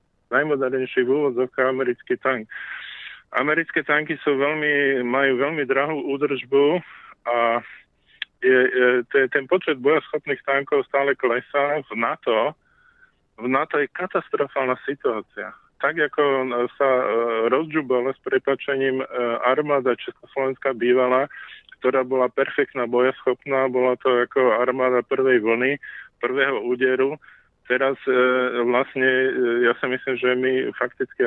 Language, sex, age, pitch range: Slovak, male, 20-39, 125-145 Hz